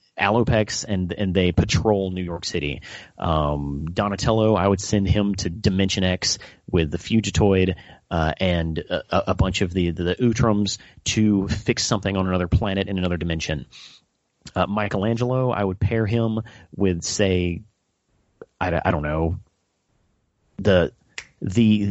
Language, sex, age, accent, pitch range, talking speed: English, male, 30-49, American, 90-110 Hz, 145 wpm